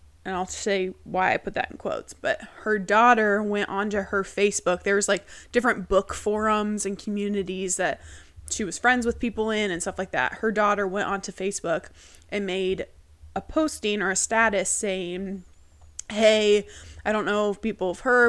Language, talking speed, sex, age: English, 185 wpm, female, 20-39